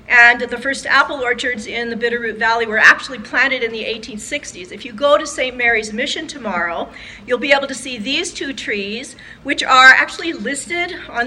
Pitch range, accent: 220-270 Hz, American